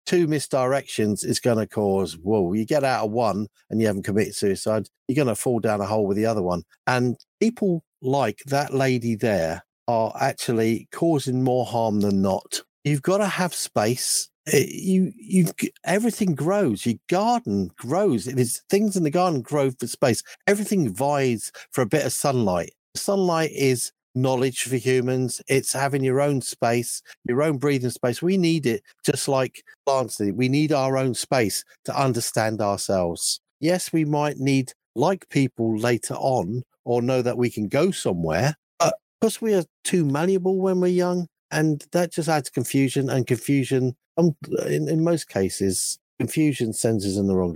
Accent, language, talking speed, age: British, English, 170 wpm, 50-69